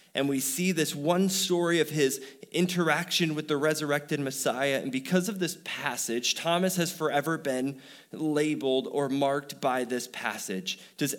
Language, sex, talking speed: English, male, 155 wpm